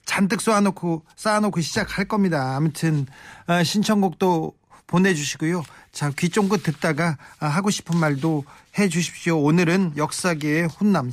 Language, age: Korean, 40-59